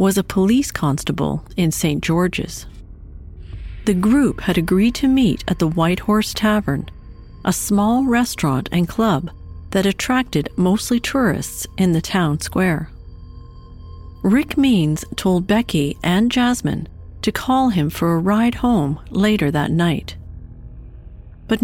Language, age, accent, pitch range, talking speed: English, 50-69, American, 155-230 Hz, 135 wpm